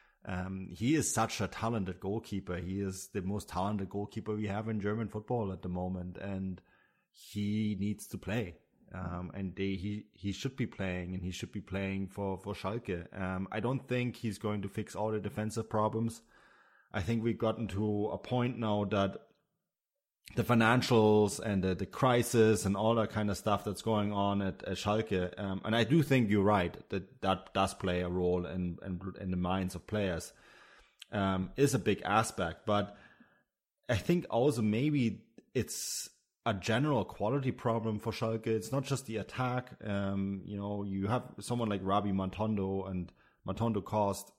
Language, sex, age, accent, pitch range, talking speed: English, male, 30-49, German, 95-110 Hz, 180 wpm